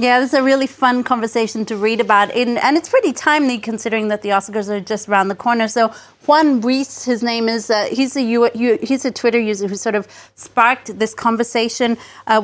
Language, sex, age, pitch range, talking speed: English, female, 30-49, 215-255 Hz, 205 wpm